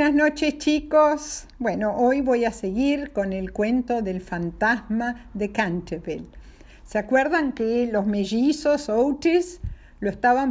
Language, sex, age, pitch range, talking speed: Spanish, female, 50-69, 225-305 Hz, 130 wpm